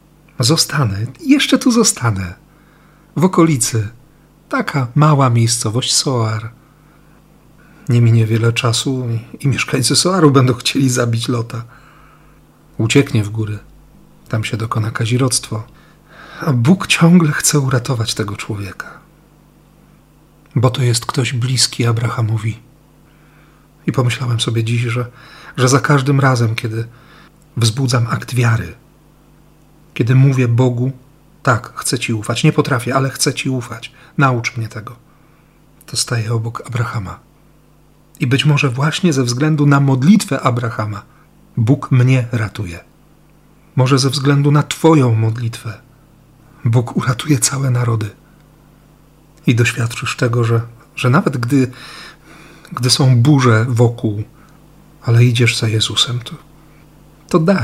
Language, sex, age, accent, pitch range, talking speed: Polish, male, 40-59, native, 120-150 Hz, 120 wpm